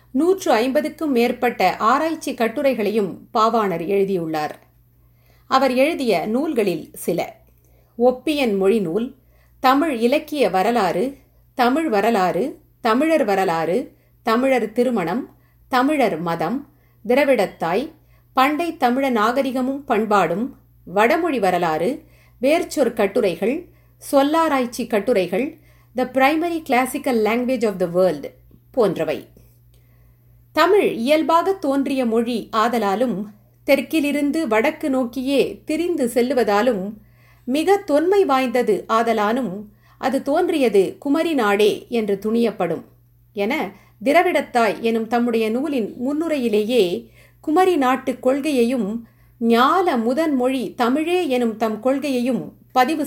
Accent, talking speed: native, 90 wpm